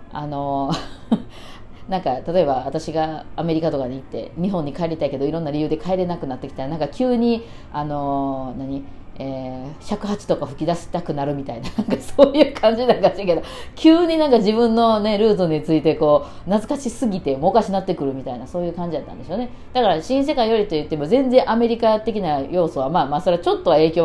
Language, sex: Japanese, female